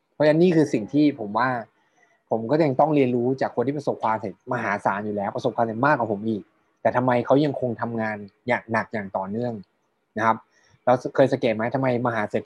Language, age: Thai, 20-39